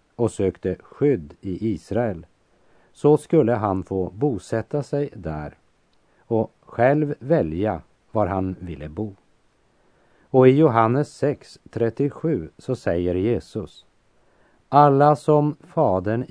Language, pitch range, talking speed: French, 95-125 Hz, 105 wpm